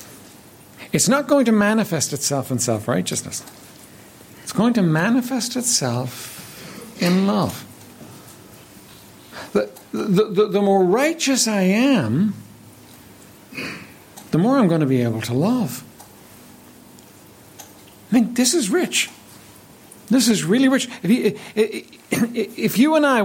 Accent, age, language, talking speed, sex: American, 60-79, English, 120 wpm, male